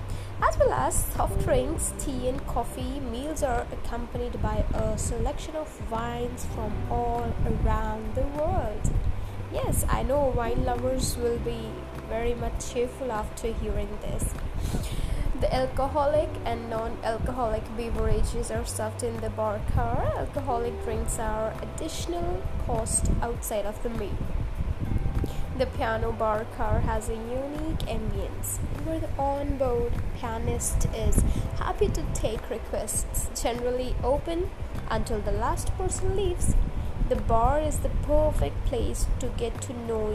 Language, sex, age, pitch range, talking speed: English, female, 20-39, 95-120 Hz, 130 wpm